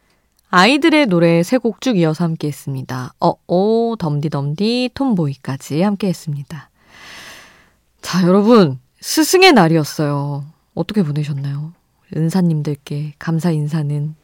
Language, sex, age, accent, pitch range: Korean, female, 20-39, native, 150-205 Hz